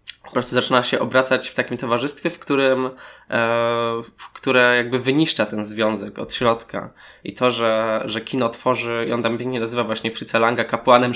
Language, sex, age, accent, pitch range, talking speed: Polish, male, 20-39, native, 110-125 Hz, 175 wpm